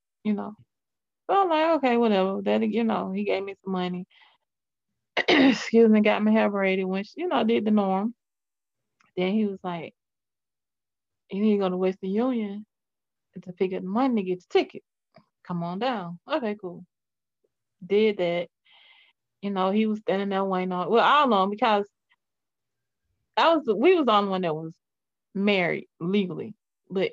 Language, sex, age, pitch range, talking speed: English, female, 20-39, 185-230 Hz, 175 wpm